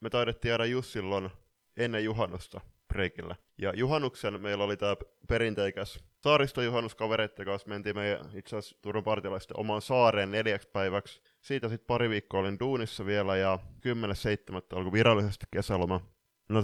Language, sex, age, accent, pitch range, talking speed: Finnish, male, 20-39, native, 95-110 Hz, 130 wpm